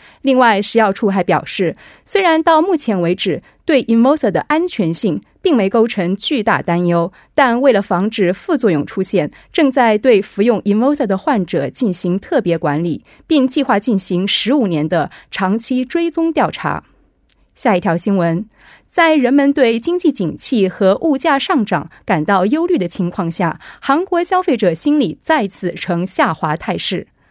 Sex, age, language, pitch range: female, 30-49, Korean, 185-280 Hz